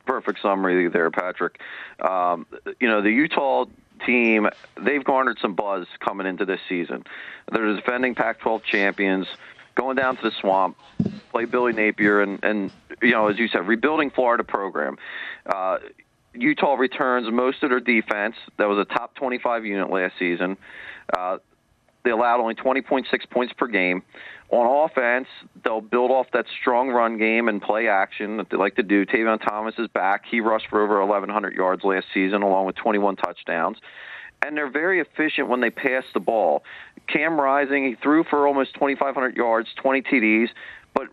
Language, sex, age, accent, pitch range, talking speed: English, male, 40-59, American, 105-130 Hz, 170 wpm